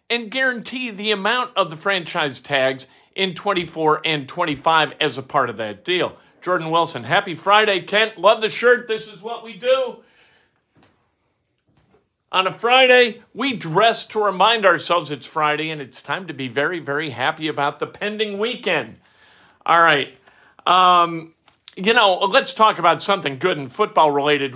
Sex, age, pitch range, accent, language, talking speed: male, 50-69, 145-200 Hz, American, English, 160 wpm